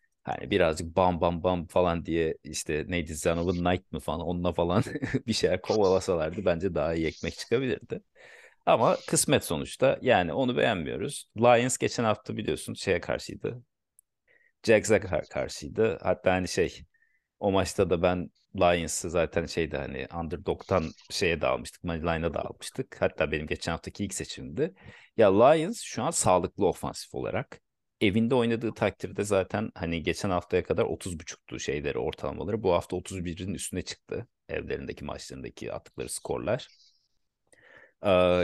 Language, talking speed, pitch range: Turkish, 140 wpm, 85-100 Hz